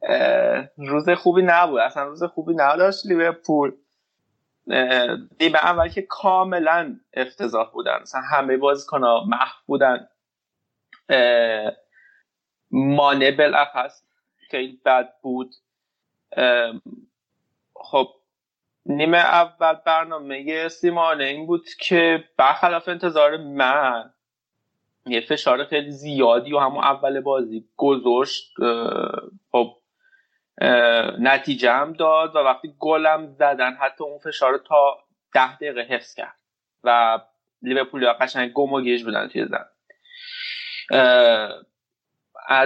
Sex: male